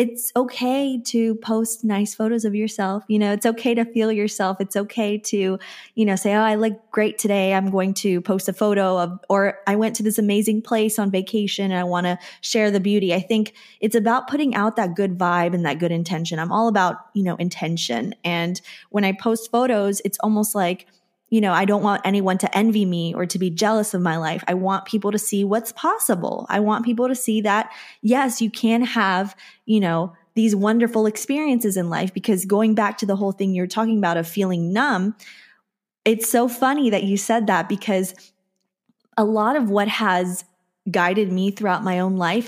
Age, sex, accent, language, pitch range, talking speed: 20-39, female, American, English, 180-220 Hz, 210 wpm